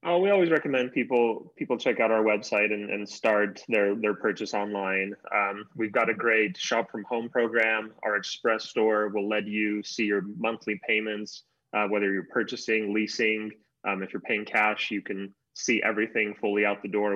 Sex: male